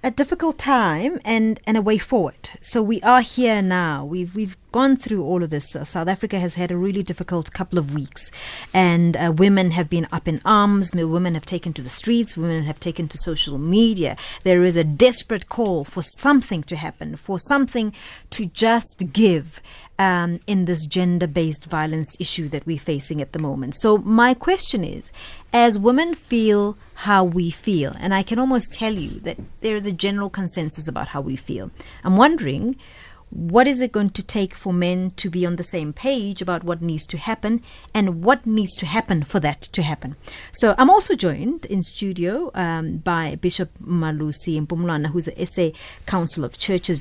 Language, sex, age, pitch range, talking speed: English, female, 30-49, 160-220 Hz, 195 wpm